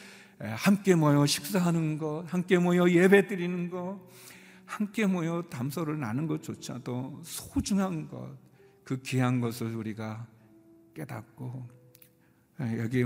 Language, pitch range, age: Korean, 115-160 Hz, 60-79